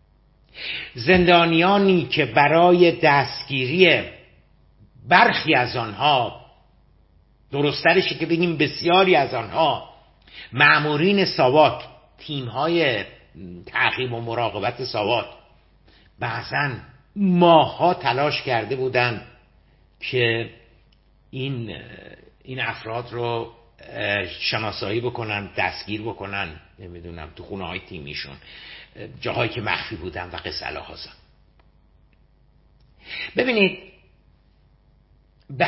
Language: Persian